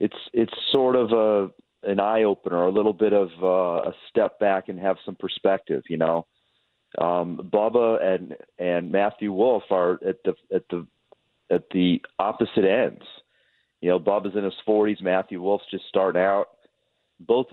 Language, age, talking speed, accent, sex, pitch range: English, 40-59, 170 wpm, American, male, 90-110 Hz